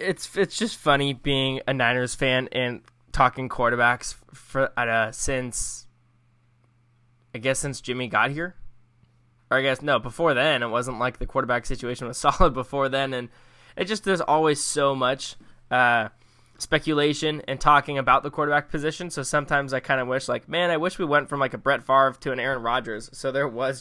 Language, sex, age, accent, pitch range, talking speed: English, male, 10-29, American, 120-140 Hz, 190 wpm